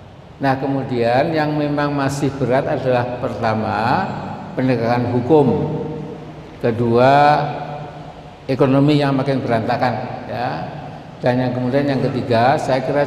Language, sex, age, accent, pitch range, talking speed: Indonesian, male, 50-69, native, 125-145 Hz, 105 wpm